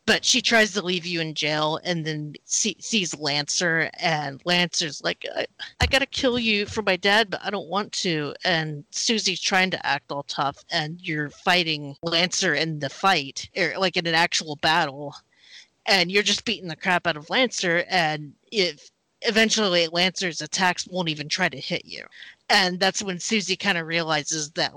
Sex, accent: female, American